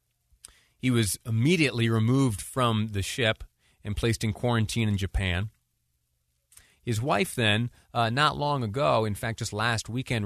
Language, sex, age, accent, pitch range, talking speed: English, male, 30-49, American, 100-135 Hz, 145 wpm